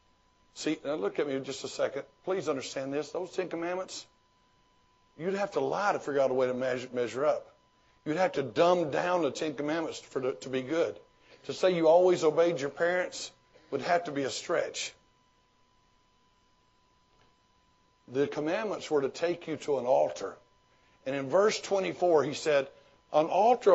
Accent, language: American, English